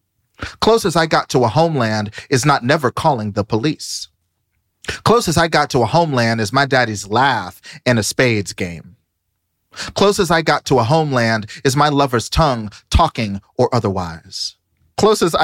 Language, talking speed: English, 155 wpm